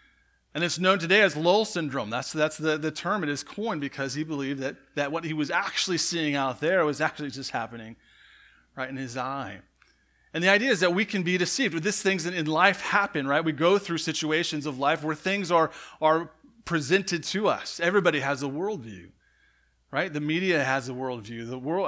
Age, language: 30-49, English